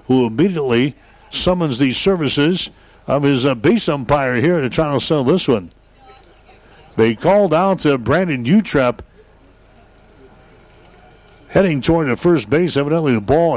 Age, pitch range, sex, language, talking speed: 60-79, 125-165 Hz, male, English, 135 wpm